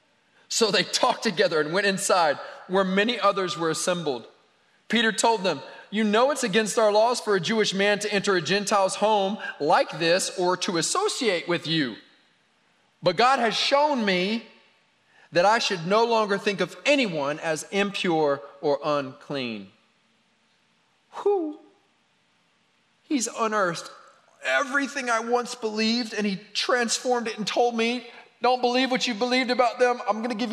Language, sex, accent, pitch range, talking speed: English, male, American, 175-240 Hz, 155 wpm